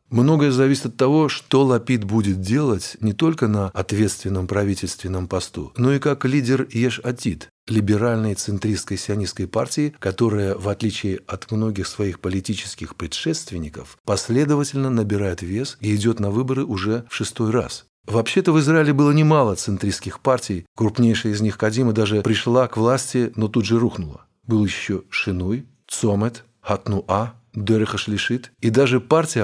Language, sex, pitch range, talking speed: Russian, male, 100-125 Hz, 145 wpm